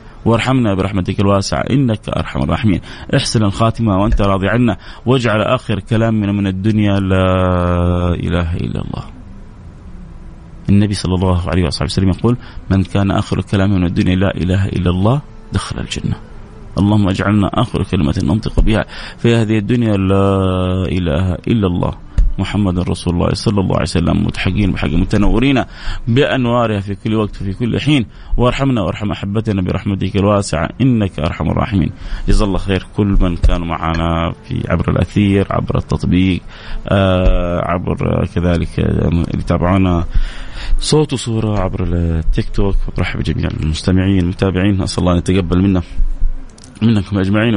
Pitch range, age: 90-110 Hz, 30-49